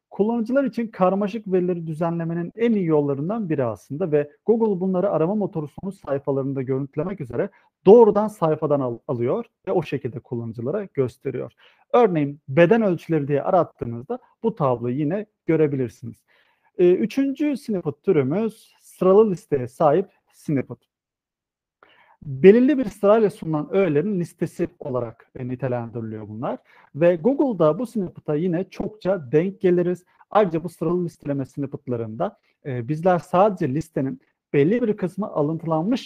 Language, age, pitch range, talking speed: Turkish, 40-59, 140-205 Hz, 120 wpm